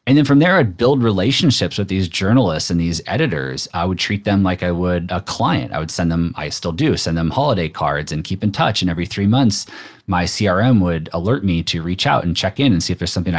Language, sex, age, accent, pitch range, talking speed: English, male, 30-49, American, 80-105 Hz, 255 wpm